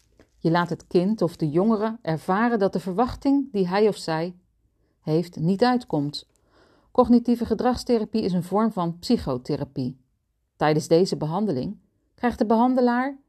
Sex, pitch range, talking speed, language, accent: female, 155-225 Hz, 140 wpm, Dutch, Dutch